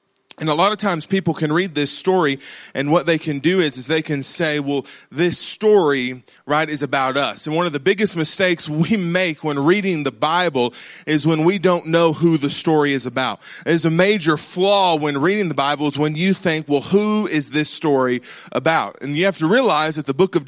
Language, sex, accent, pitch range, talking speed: English, male, American, 145-180 Hz, 225 wpm